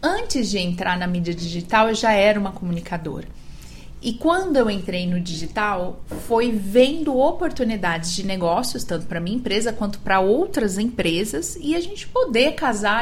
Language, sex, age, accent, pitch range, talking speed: Portuguese, female, 30-49, Brazilian, 185-230 Hz, 160 wpm